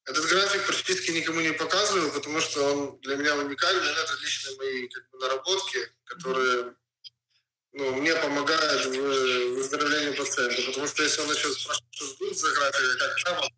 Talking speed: 155 wpm